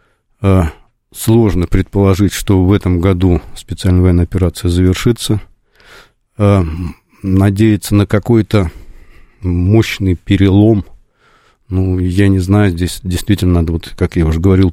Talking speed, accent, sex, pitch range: 110 wpm, native, male, 90-105 Hz